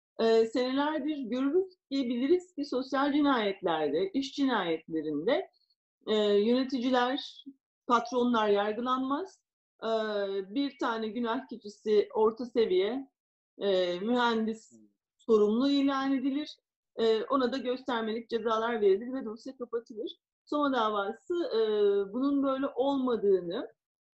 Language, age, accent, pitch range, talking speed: Turkish, 40-59, native, 215-275 Hz, 100 wpm